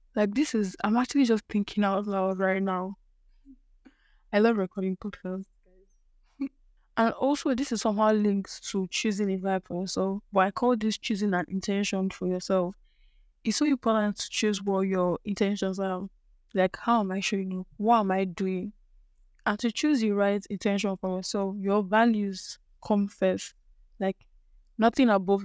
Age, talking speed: 10-29, 165 wpm